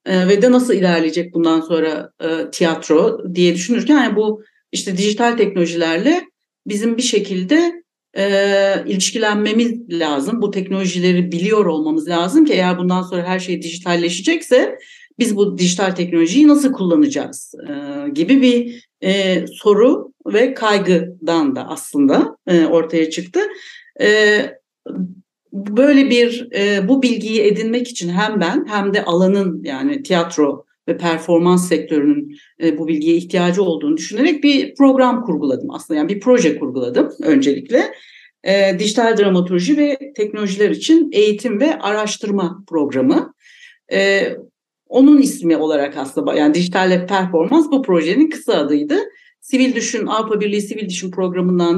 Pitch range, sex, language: 175-265 Hz, female, Turkish